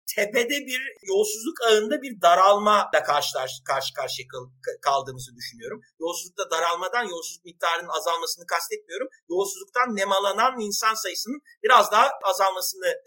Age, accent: 50-69, native